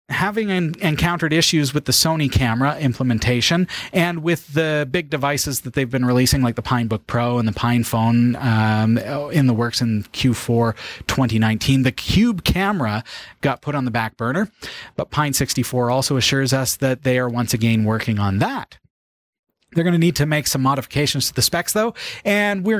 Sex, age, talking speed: male, 30-49, 175 wpm